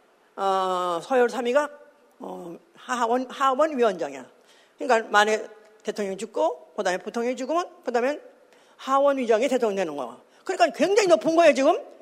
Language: Korean